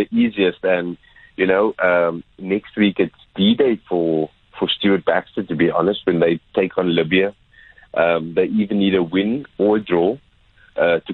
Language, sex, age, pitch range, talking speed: English, male, 30-49, 90-135 Hz, 170 wpm